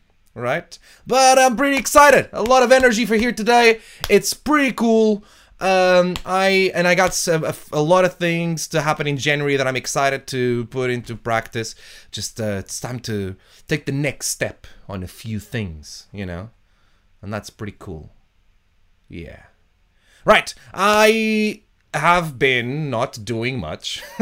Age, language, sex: 20-39, English, male